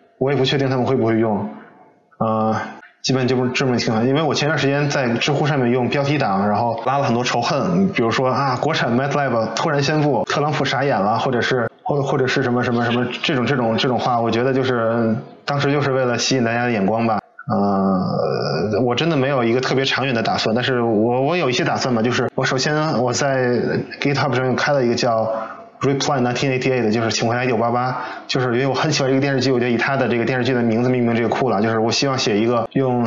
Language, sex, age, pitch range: Chinese, male, 20-39, 115-140 Hz